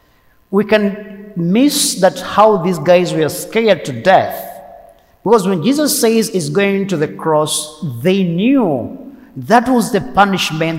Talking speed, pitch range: 145 wpm, 150-205 Hz